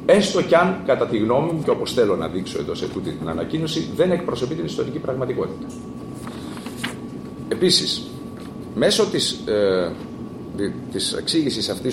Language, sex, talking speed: Greek, male, 140 wpm